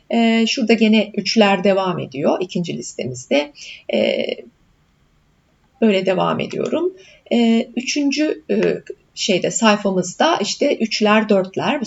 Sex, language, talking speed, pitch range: female, Turkish, 105 wpm, 200-280 Hz